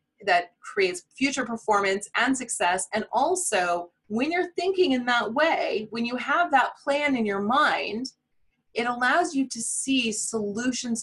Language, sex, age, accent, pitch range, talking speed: English, female, 30-49, American, 195-280 Hz, 150 wpm